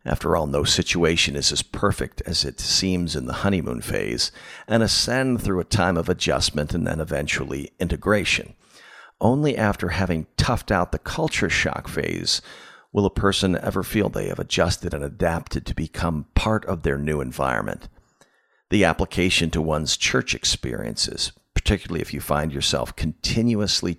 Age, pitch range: 50-69, 80-100 Hz